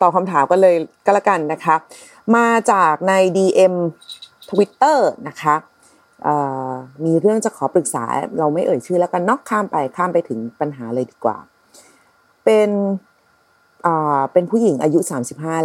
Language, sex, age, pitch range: Thai, female, 30-49, 150-205 Hz